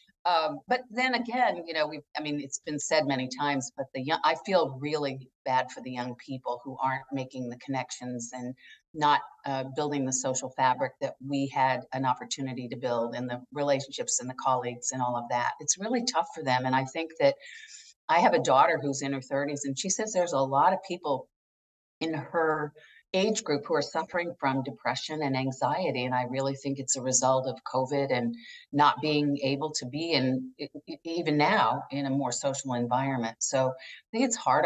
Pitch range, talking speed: 130-160 Hz, 205 wpm